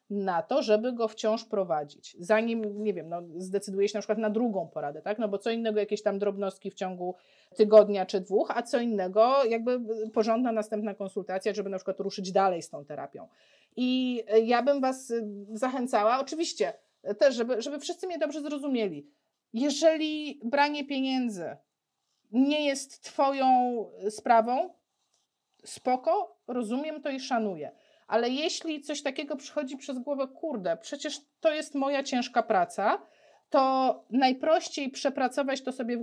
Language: Polish